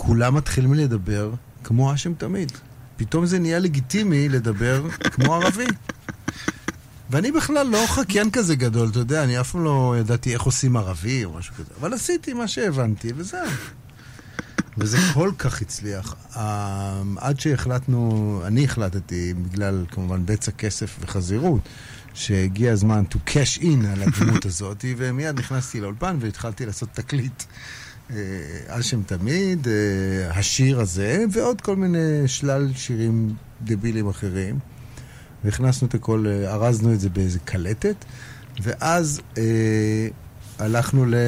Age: 50-69